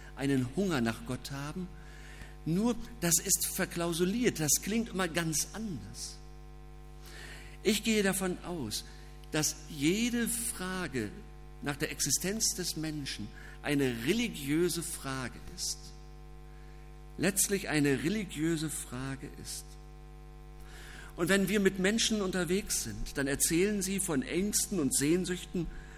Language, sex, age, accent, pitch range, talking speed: German, male, 50-69, German, 150-185 Hz, 115 wpm